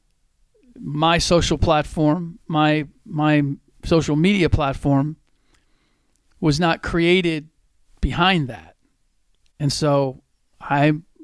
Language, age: English, 50-69